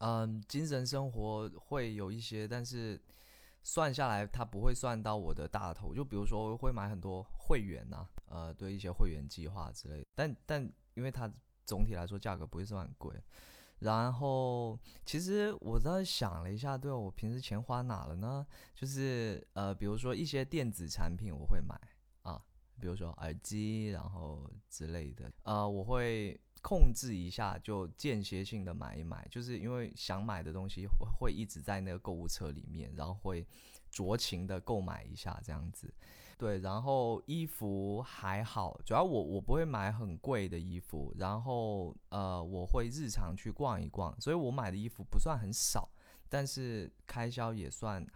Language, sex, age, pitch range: Chinese, male, 20-39, 90-120 Hz